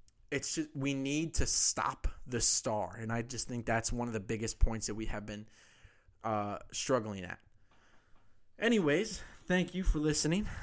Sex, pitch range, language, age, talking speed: male, 110-140 Hz, English, 20-39, 170 wpm